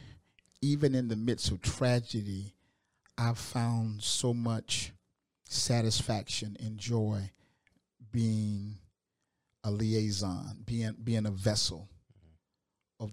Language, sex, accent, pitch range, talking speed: English, male, American, 105-120 Hz, 95 wpm